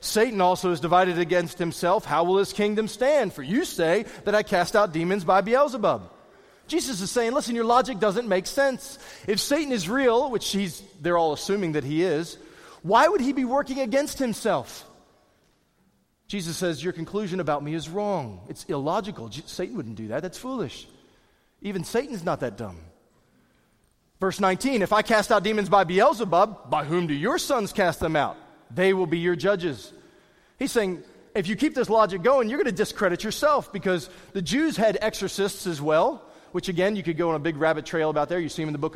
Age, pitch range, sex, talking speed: 30-49, 175-235 Hz, male, 200 wpm